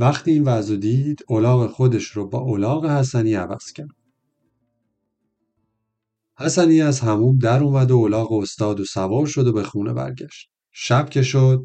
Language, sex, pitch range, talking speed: Persian, male, 110-140 Hz, 150 wpm